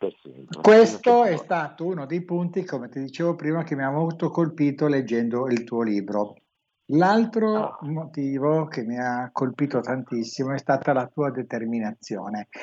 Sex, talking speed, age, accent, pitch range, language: male, 145 wpm, 60-79, native, 120-160 Hz, Italian